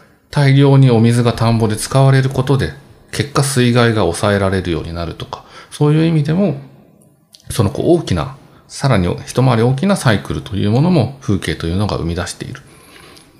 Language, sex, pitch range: Japanese, male, 100-140 Hz